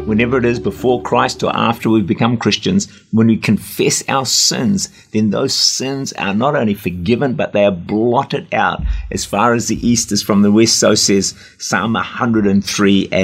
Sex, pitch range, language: male, 105-140 Hz, English